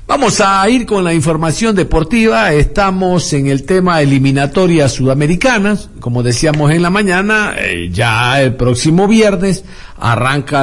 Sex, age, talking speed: male, 50-69, 135 wpm